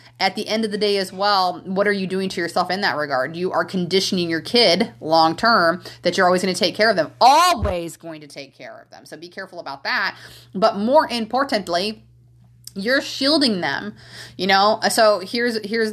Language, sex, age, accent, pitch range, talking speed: English, female, 30-49, American, 150-195 Hz, 205 wpm